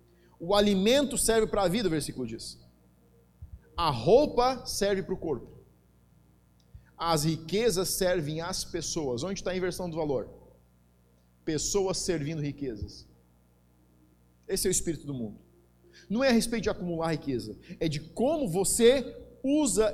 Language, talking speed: Portuguese, 140 wpm